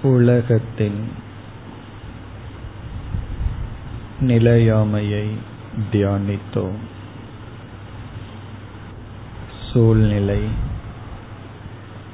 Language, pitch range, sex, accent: Tamil, 105-115 Hz, male, native